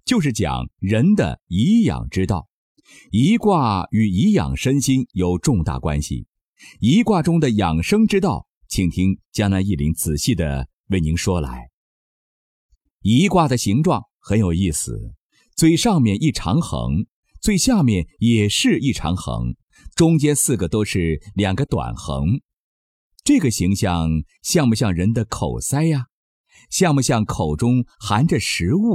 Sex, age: male, 50-69